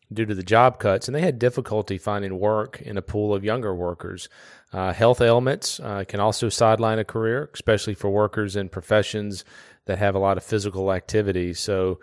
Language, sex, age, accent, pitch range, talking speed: English, male, 30-49, American, 95-115 Hz, 195 wpm